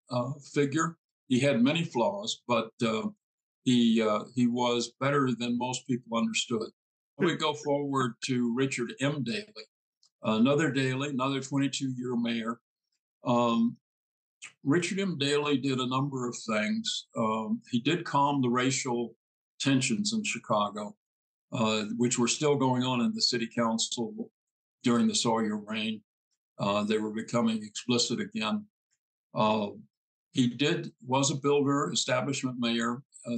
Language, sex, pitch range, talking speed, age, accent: English, male, 115-140 Hz, 135 wpm, 60-79, American